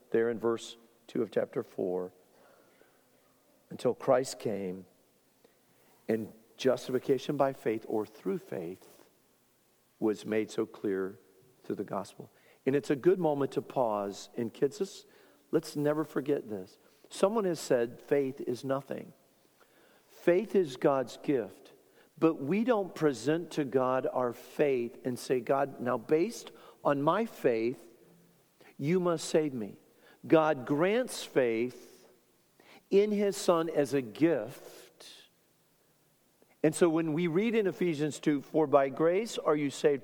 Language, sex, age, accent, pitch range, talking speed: English, male, 50-69, American, 115-165 Hz, 135 wpm